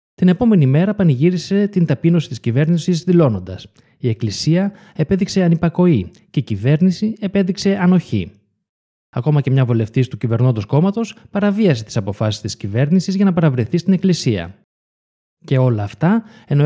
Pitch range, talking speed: 115-175 Hz, 140 wpm